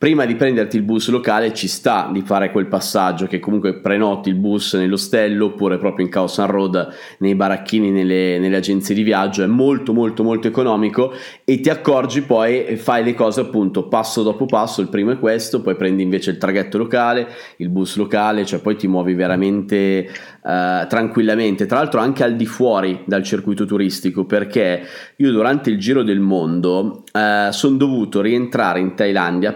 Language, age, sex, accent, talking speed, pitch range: Italian, 20-39, male, native, 180 wpm, 95-110 Hz